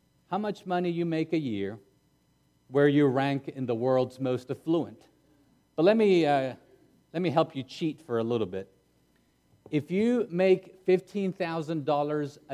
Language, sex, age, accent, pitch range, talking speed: English, male, 40-59, American, 115-165 Hz, 155 wpm